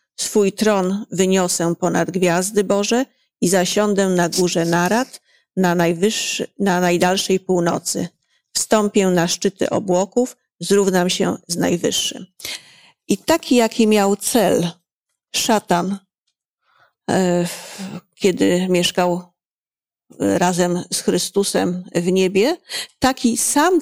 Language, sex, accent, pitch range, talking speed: Polish, female, native, 180-235 Hz, 95 wpm